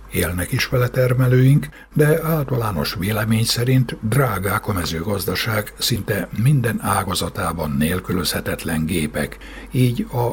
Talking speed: 105 wpm